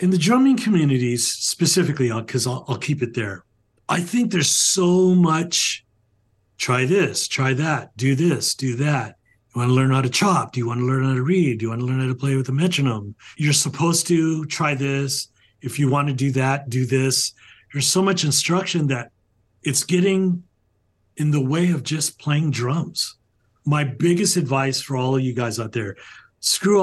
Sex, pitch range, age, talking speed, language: male, 120-165 Hz, 40-59, 195 wpm, English